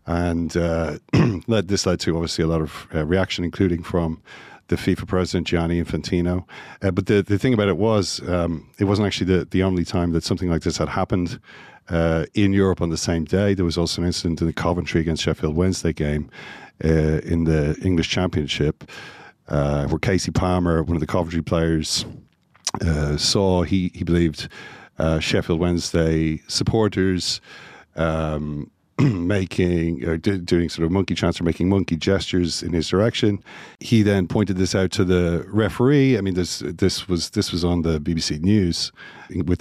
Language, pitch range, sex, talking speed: English, 80-95 Hz, male, 180 wpm